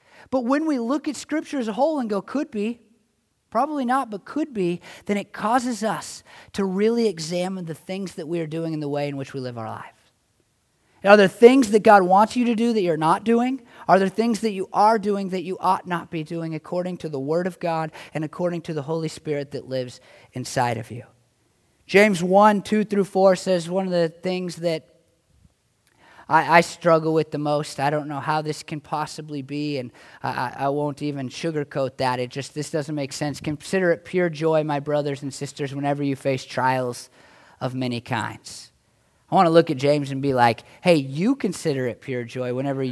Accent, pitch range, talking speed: American, 140-195 Hz, 210 wpm